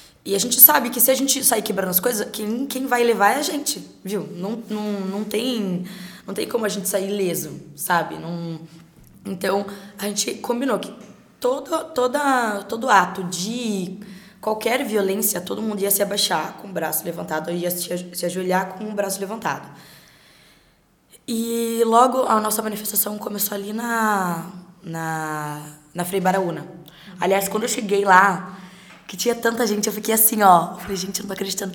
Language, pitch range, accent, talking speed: Portuguese, 190-235 Hz, Brazilian, 175 wpm